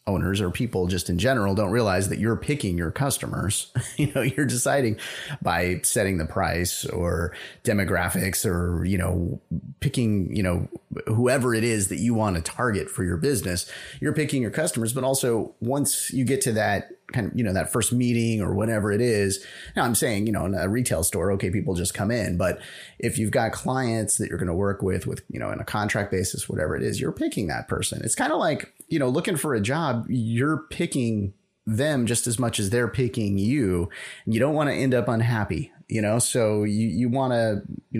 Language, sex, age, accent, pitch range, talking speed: English, male, 30-49, American, 100-125 Hz, 215 wpm